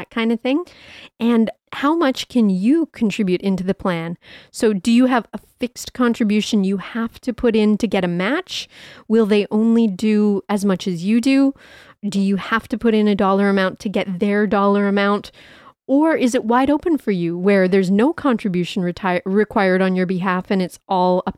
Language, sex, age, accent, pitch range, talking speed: English, female, 30-49, American, 195-235 Hz, 200 wpm